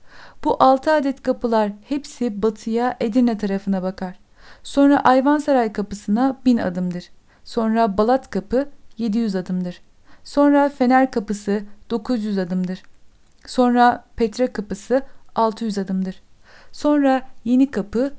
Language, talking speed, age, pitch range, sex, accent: Turkish, 105 wpm, 50-69, 205-260 Hz, female, native